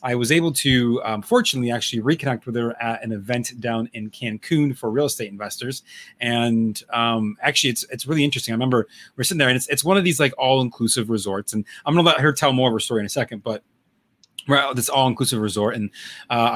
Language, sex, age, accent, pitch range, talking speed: English, male, 30-49, American, 115-140 Hz, 230 wpm